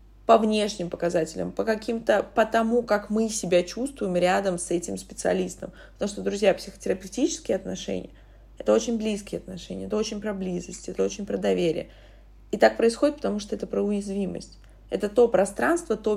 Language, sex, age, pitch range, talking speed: Russian, female, 20-39, 170-205 Hz, 165 wpm